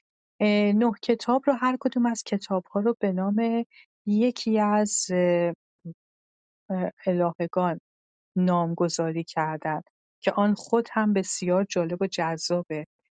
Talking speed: 105 wpm